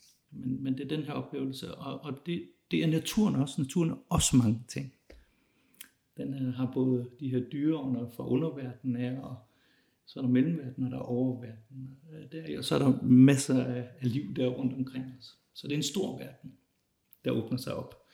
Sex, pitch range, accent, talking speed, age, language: male, 125-155 Hz, Danish, 180 wpm, 60-79, English